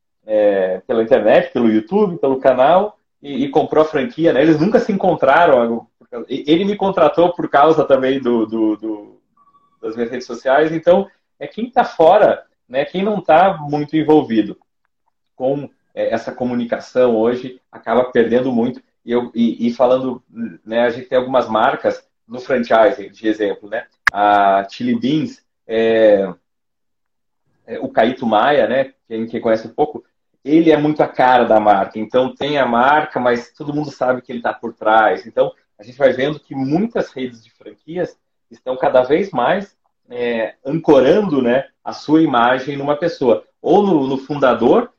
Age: 30-49